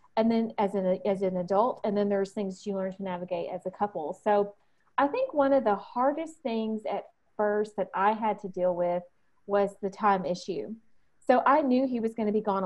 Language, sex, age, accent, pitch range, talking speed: English, female, 30-49, American, 200-235 Hz, 225 wpm